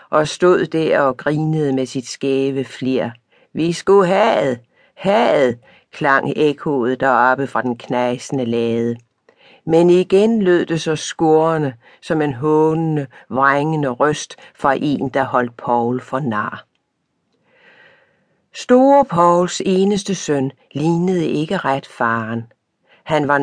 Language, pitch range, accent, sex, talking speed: Danish, 135-185 Hz, native, female, 125 wpm